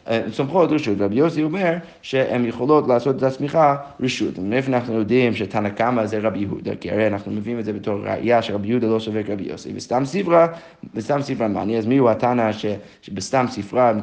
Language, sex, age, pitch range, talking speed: Hebrew, male, 30-49, 110-140 Hz, 195 wpm